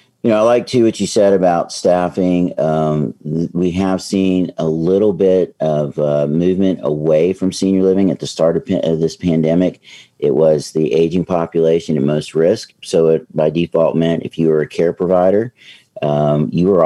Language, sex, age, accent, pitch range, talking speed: English, male, 40-59, American, 75-85 Hz, 190 wpm